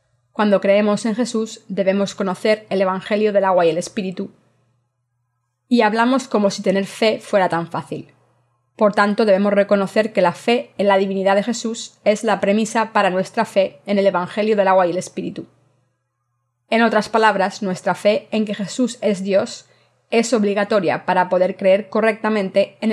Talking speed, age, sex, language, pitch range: 170 wpm, 20-39, female, Spanish, 175-215 Hz